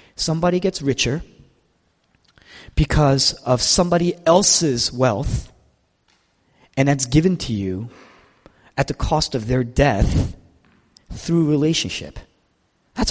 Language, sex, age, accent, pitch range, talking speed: English, male, 30-49, American, 120-155 Hz, 100 wpm